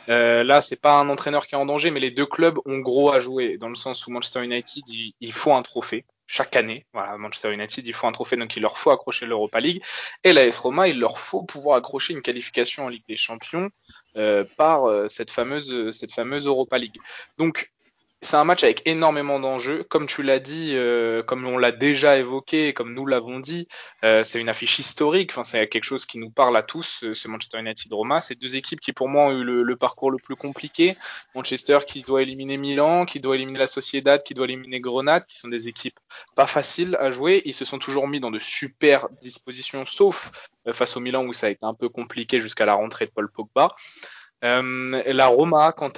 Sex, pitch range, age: male, 120-145 Hz, 20-39